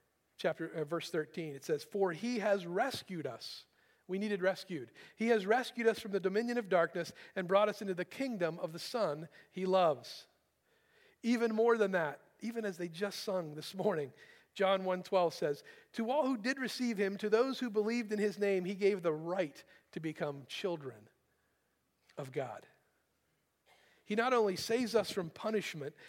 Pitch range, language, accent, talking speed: 170-220 Hz, English, American, 180 wpm